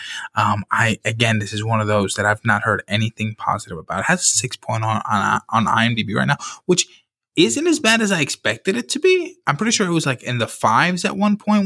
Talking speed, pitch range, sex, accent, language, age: 245 wpm, 110-175 Hz, male, American, English, 20-39